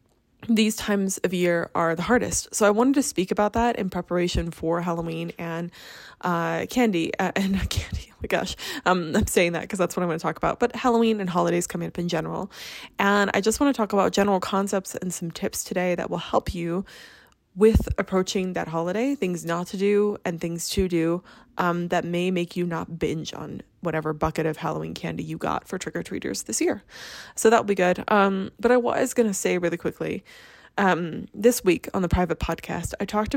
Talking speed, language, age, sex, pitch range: 210 wpm, English, 20-39, female, 165-195 Hz